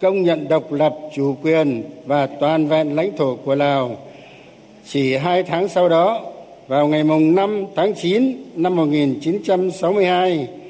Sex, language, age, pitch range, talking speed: male, Vietnamese, 60-79, 145-190 Hz, 180 wpm